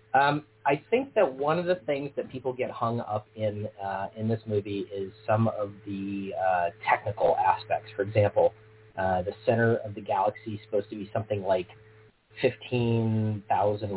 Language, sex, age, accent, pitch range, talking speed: English, male, 30-49, American, 95-115 Hz, 170 wpm